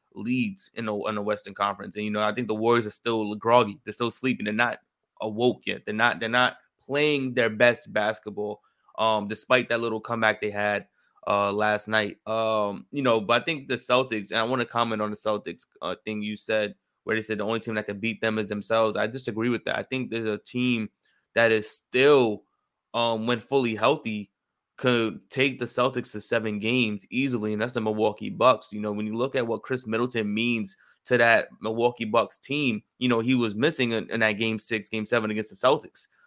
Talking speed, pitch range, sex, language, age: 215 wpm, 105-120 Hz, male, English, 20-39